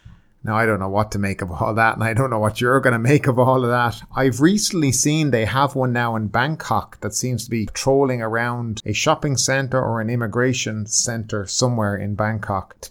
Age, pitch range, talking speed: 30-49, 105-125 Hz, 230 wpm